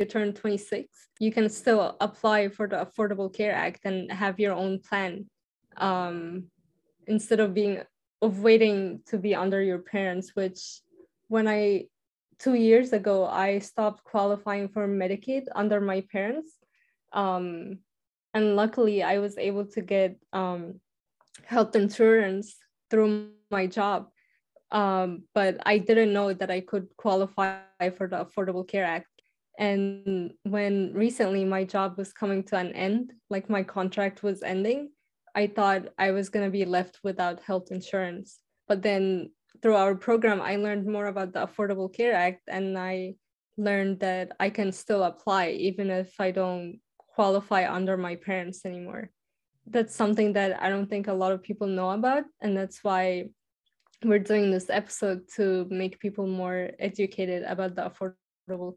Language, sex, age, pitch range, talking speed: English, female, 20-39, 190-210 Hz, 155 wpm